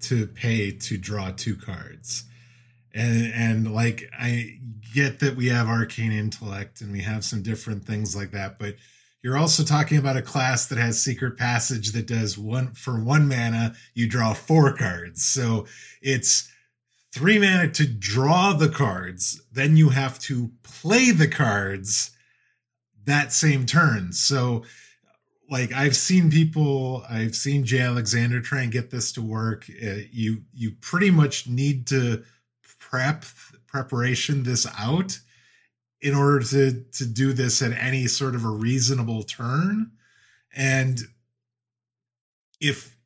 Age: 20-39